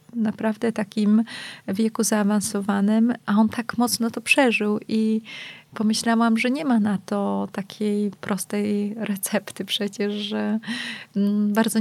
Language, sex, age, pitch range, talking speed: Polish, female, 20-39, 195-220 Hz, 115 wpm